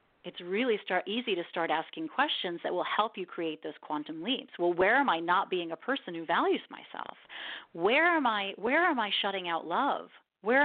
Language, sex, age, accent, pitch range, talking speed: English, female, 40-59, American, 180-245 Hz, 210 wpm